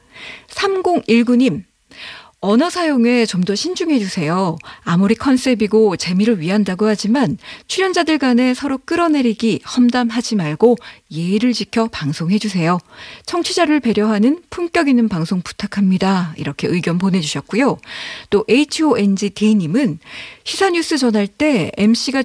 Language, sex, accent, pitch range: Korean, female, native, 185-270 Hz